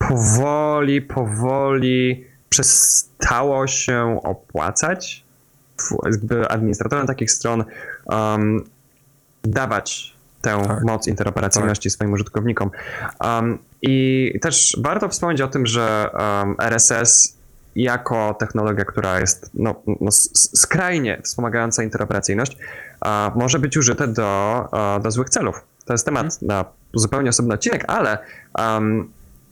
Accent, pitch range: native, 105-135 Hz